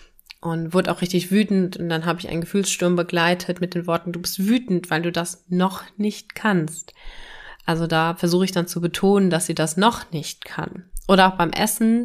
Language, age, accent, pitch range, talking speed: German, 20-39, German, 165-190 Hz, 205 wpm